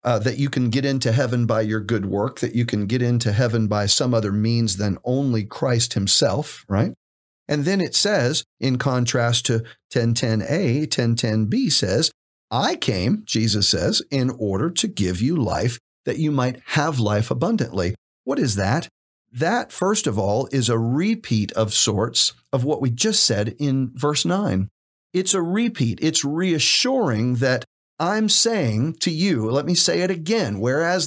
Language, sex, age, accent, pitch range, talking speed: English, male, 50-69, American, 110-150 Hz, 175 wpm